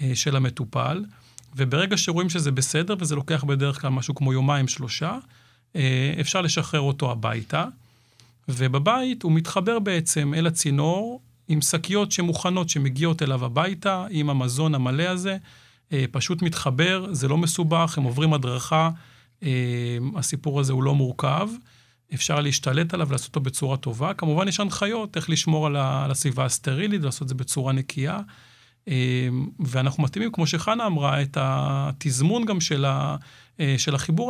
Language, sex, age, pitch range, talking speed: Hebrew, male, 40-59, 130-165 Hz, 130 wpm